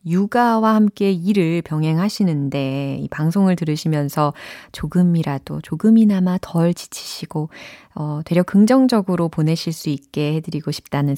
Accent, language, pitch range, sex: native, Korean, 155-225 Hz, female